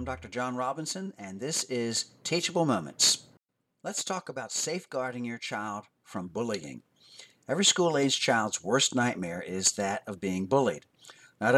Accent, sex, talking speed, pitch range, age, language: American, male, 145 wpm, 100-135 Hz, 50-69, English